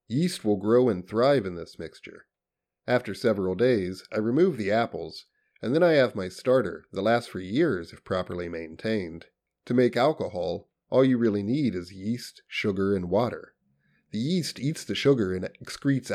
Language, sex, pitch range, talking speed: English, male, 95-125 Hz, 175 wpm